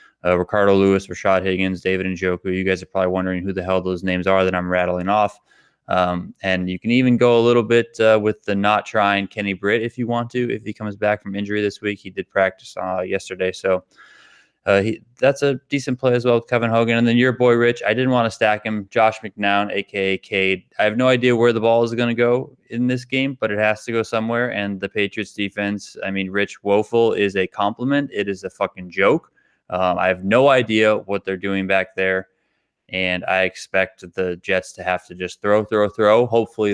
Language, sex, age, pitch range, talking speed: English, male, 20-39, 95-115 Hz, 230 wpm